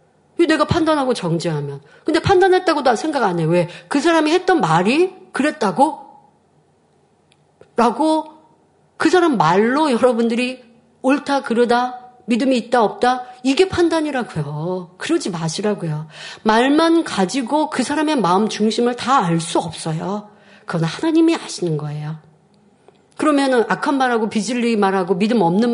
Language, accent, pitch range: Korean, native, 195-275 Hz